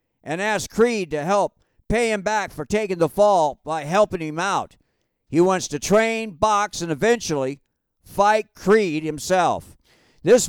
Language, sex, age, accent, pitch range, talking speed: English, male, 50-69, American, 165-225 Hz, 155 wpm